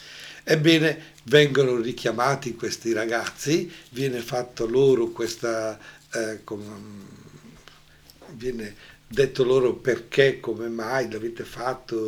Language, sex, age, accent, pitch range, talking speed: Italian, male, 60-79, native, 115-150 Hz, 90 wpm